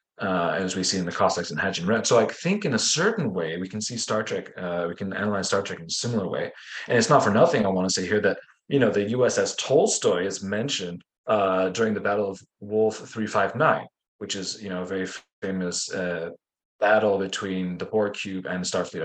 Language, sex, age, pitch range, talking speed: English, male, 20-39, 95-115 Hz, 225 wpm